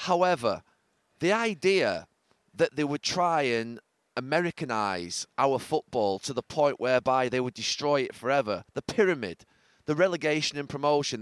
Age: 30-49